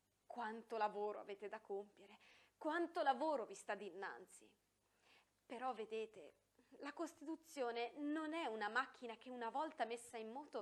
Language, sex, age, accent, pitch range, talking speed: Italian, female, 30-49, native, 210-275 Hz, 135 wpm